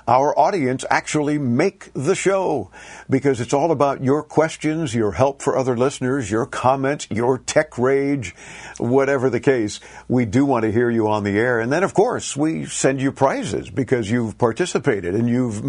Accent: American